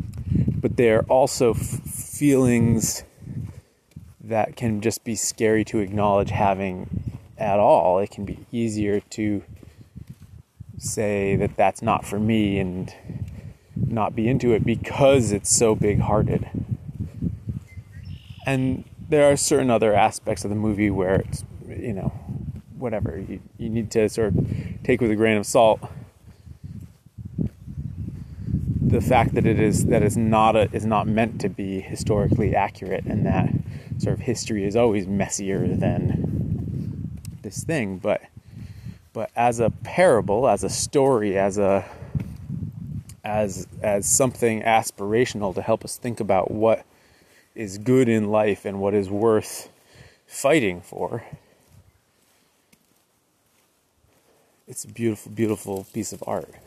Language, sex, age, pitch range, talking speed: English, male, 30-49, 100-120 Hz, 130 wpm